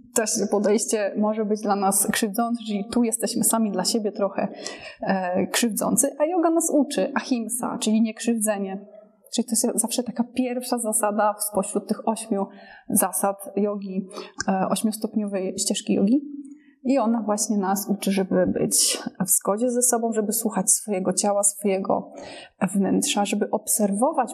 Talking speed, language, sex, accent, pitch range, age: 145 wpm, Polish, female, native, 200-245 Hz, 20-39